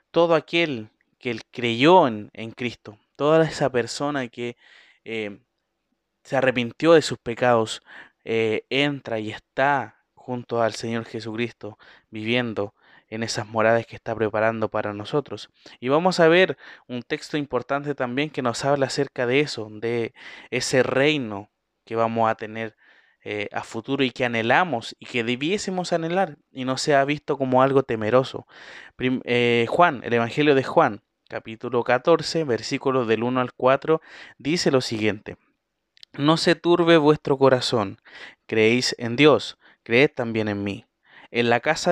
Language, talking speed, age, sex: Spanish, 150 wpm, 20-39, male